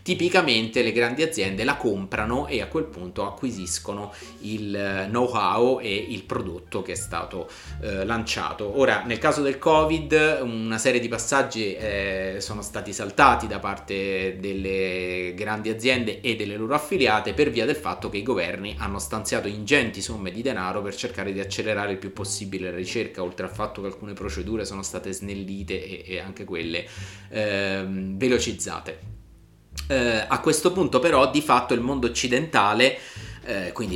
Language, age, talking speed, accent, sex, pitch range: Italian, 30-49, 160 wpm, native, male, 95-125 Hz